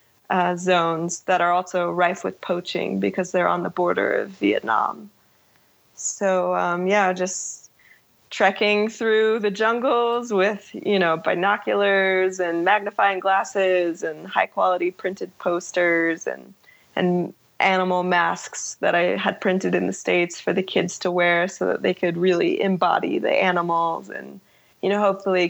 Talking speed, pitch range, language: 145 wpm, 175-200 Hz, English